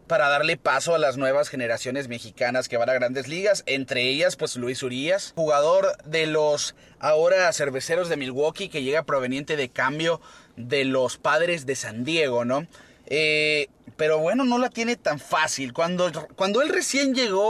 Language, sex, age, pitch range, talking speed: Spanish, male, 30-49, 135-195 Hz, 170 wpm